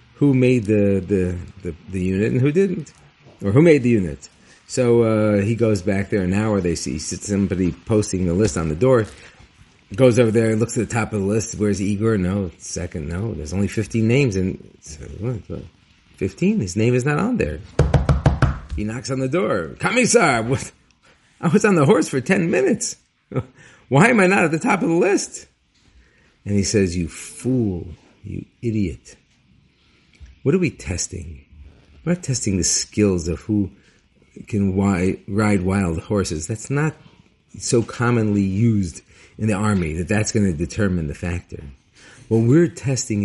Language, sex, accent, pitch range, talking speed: English, male, American, 90-120 Hz, 175 wpm